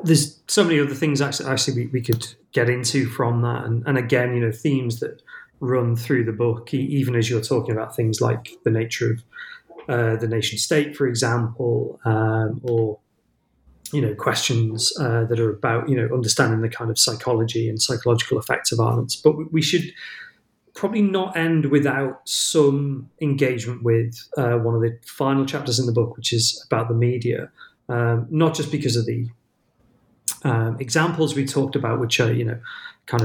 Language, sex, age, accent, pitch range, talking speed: English, male, 30-49, British, 115-135 Hz, 180 wpm